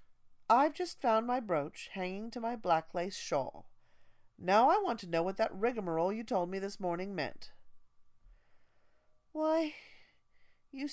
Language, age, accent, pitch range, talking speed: English, 40-59, American, 170-255 Hz, 150 wpm